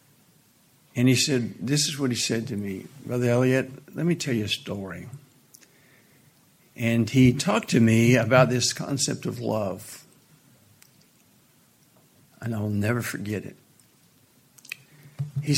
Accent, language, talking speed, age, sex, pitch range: American, English, 130 wpm, 60-79, male, 115-140 Hz